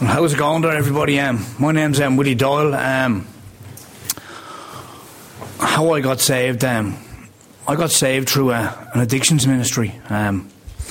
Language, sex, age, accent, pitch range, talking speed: English, male, 30-49, Irish, 105-125 Hz, 150 wpm